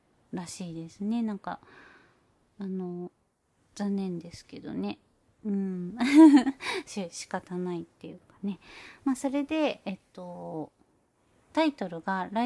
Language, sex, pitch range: Japanese, female, 175-225 Hz